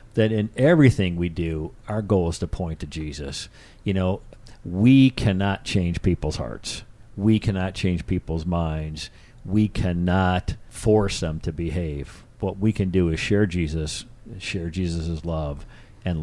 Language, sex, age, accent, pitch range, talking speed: English, male, 50-69, American, 85-110 Hz, 150 wpm